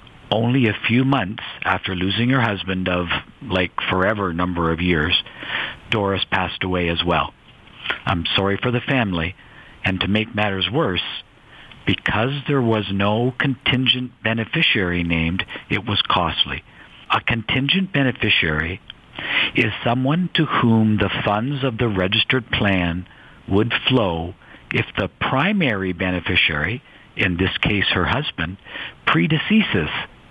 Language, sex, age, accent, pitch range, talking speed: English, male, 60-79, American, 95-120 Hz, 125 wpm